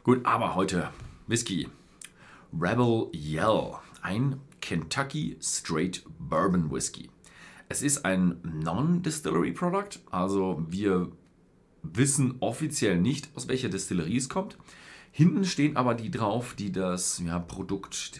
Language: German